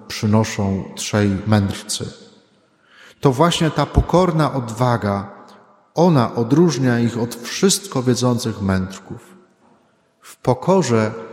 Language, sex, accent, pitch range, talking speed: Polish, male, native, 110-135 Hz, 90 wpm